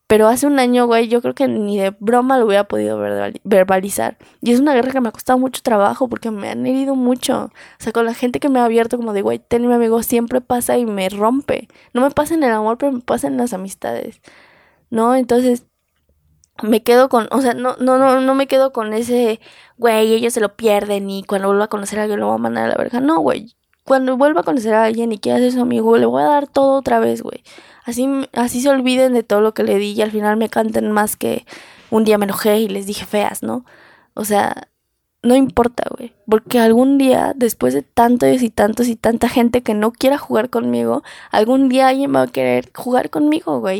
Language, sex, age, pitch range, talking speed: Spanish, female, 10-29, 210-255 Hz, 235 wpm